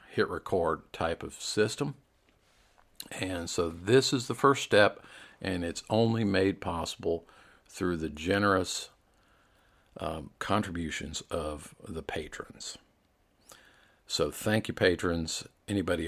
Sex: male